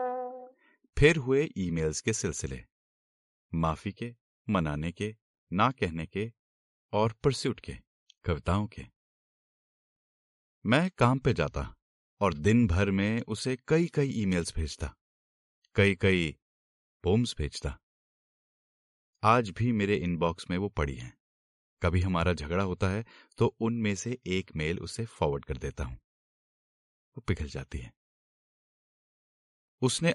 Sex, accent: male, native